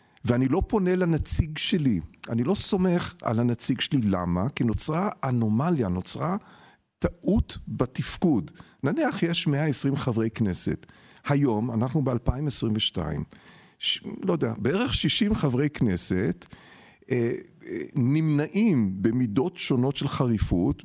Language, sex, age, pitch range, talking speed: Hebrew, male, 50-69, 120-185 Hz, 115 wpm